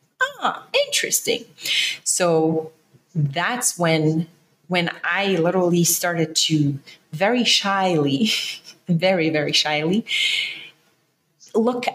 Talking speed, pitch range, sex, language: 80 wpm, 165-220 Hz, female, English